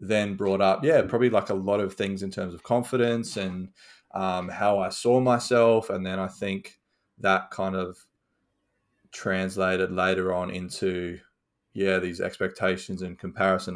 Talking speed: 155 wpm